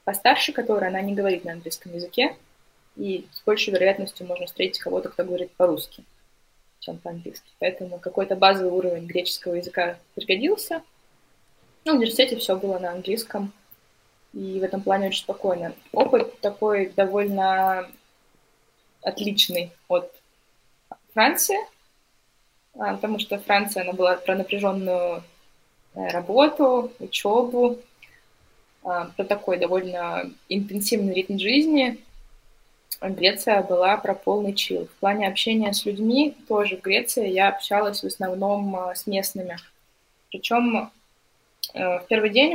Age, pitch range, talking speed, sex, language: 20-39, 185-220 Hz, 115 wpm, female, Russian